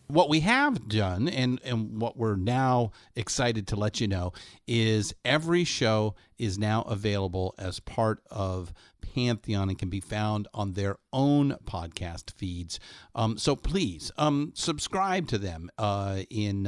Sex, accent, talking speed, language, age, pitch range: male, American, 150 wpm, English, 50-69, 100-135 Hz